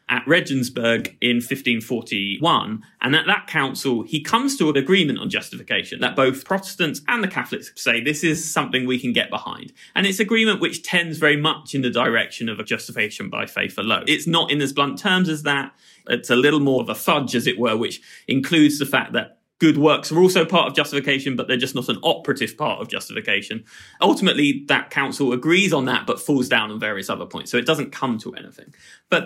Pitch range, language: 125-160 Hz, English